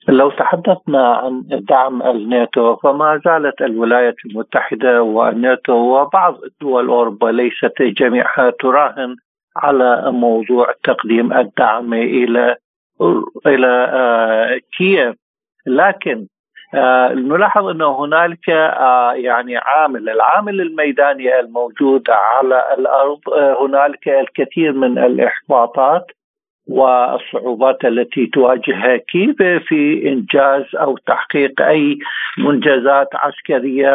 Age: 50-69